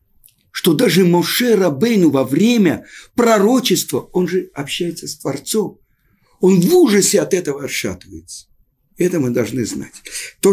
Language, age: Russian, 50-69